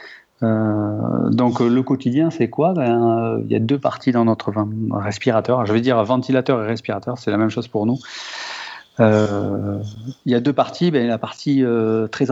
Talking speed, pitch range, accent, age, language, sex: 195 wpm, 105-125 Hz, French, 40-59, French, male